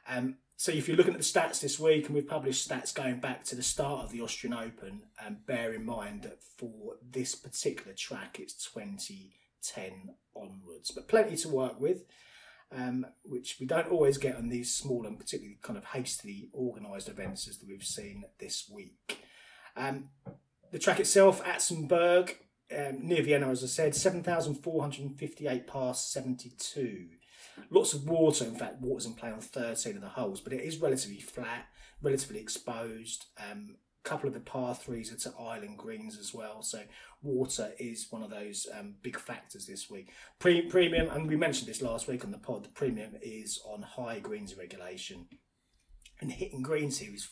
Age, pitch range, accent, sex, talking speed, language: 30-49, 120-170 Hz, British, male, 180 wpm, English